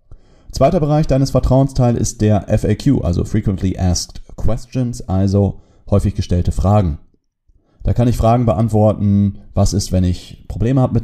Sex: male